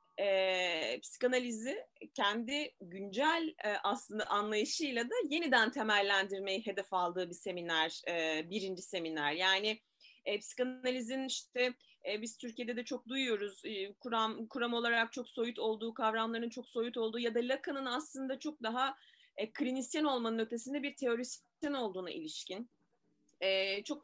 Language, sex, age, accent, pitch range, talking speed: Turkish, female, 30-49, native, 195-265 Hz, 135 wpm